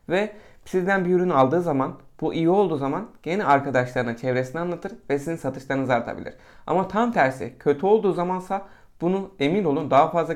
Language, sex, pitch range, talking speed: Turkish, male, 130-175 Hz, 170 wpm